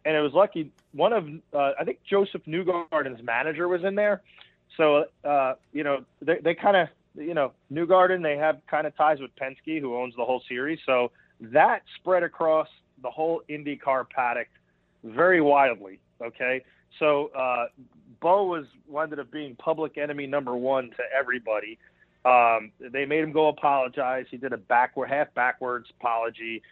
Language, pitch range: English, 130-160 Hz